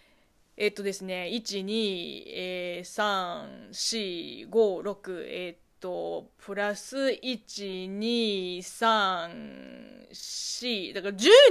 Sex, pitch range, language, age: female, 200-310 Hz, Japanese, 20-39